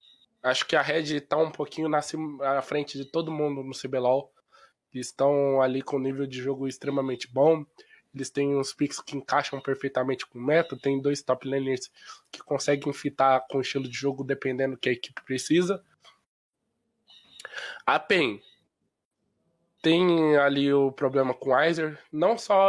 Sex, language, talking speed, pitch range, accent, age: male, Portuguese, 165 wpm, 135-155 Hz, Brazilian, 20-39